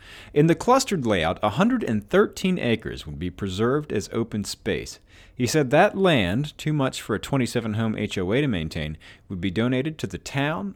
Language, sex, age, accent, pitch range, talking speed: English, male, 30-49, American, 105-165 Hz, 165 wpm